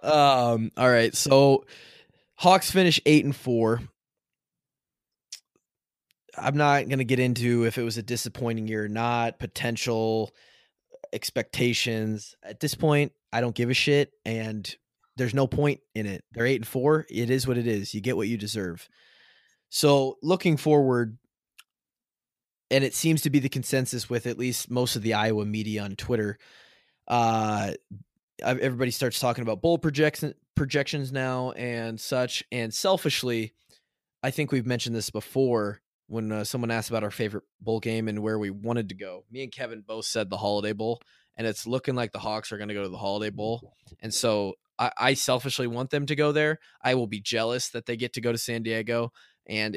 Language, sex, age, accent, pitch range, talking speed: English, male, 20-39, American, 110-130 Hz, 180 wpm